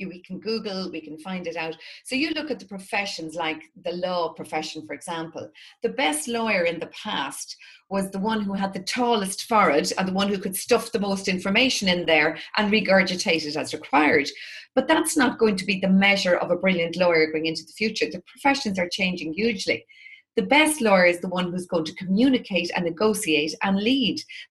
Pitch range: 175-230 Hz